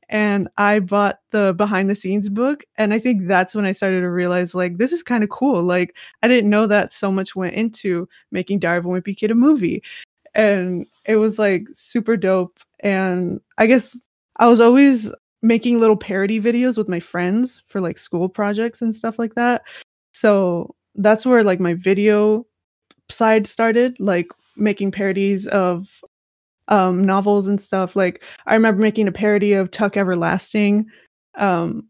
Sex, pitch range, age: female, 190-220 Hz, 20-39